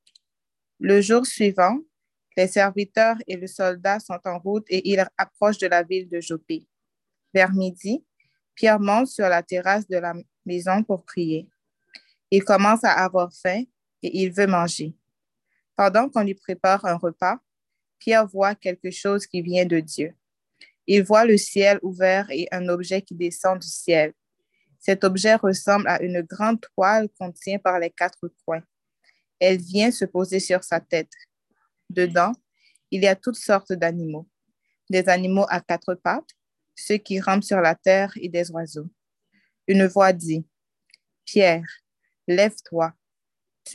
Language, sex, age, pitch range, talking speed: French, female, 20-39, 175-200 Hz, 150 wpm